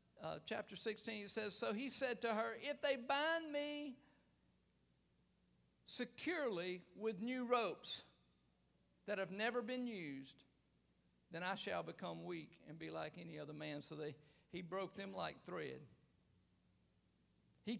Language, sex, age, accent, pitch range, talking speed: English, male, 50-69, American, 175-245 Hz, 140 wpm